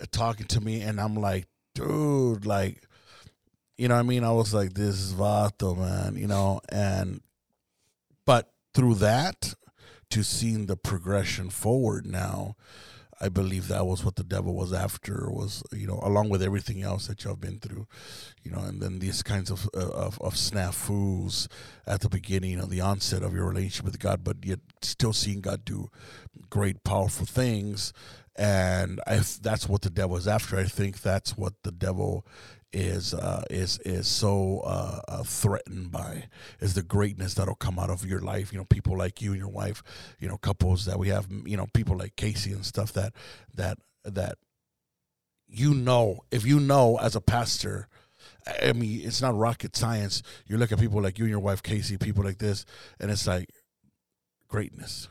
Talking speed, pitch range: 185 wpm, 95-110 Hz